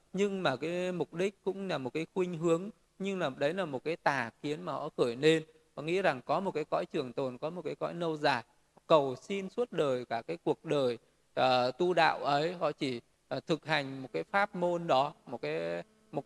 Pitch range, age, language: 140-185 Hz, 20-39, Vietnamese